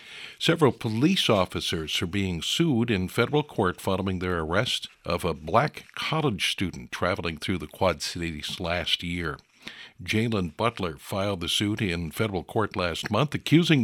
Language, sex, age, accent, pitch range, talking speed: English, male, 60-79, American, 85-110 Hz, 150 wpm